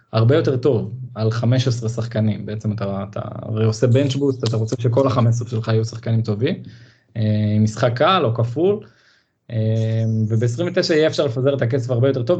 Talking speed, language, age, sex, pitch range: 170 wpm, Hebrew, 20-39, male, 115-140 Hz